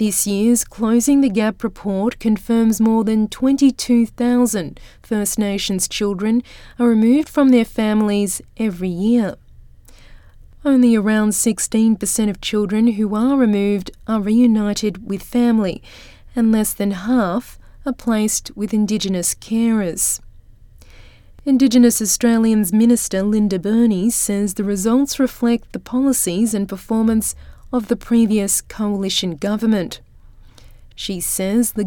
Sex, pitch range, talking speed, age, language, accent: female, 200-235 Hz, 115 wpm, 30-49, English, Australian